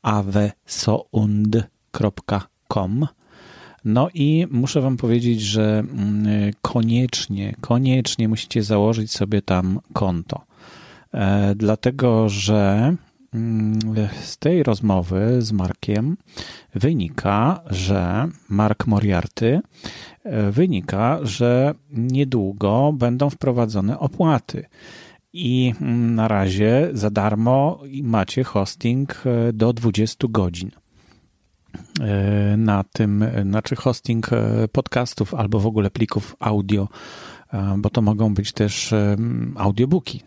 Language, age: Polish, 40-59